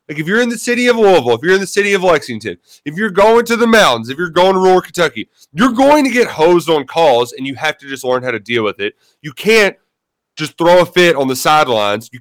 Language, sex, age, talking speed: English, male, 30-49, 270 wpm